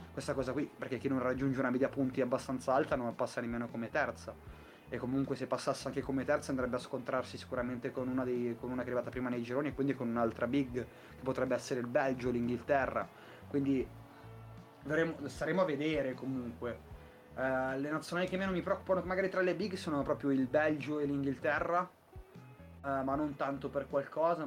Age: 20-39